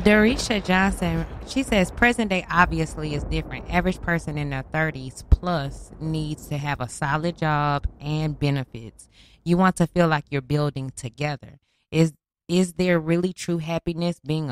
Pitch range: 135-170 Hz